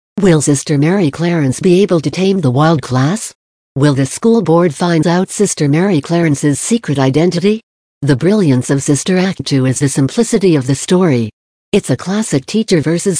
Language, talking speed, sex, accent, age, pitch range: English, 175 wpm, female, American, 60-79, 135-185 Hz